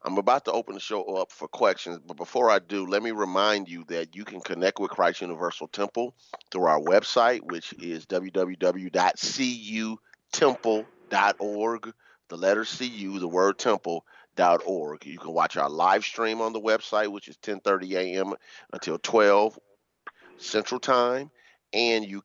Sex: male